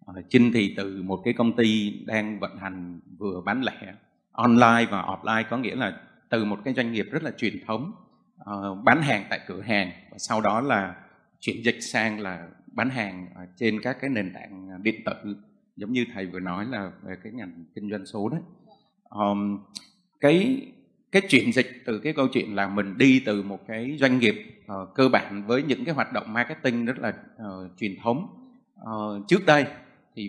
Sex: male